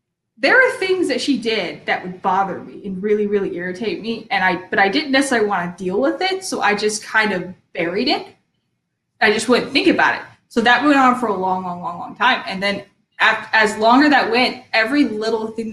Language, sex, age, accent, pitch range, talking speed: English, female, 20-39, American, 195-260 Hz, 230 wpm